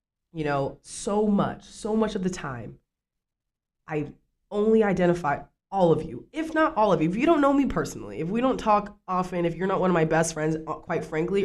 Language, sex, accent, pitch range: English, female, American, 140-175 Hz